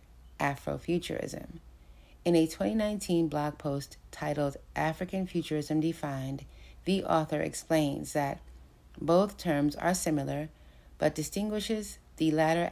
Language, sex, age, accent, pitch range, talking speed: English, female, 30-49, American, 135-160 Hz, 105 wpm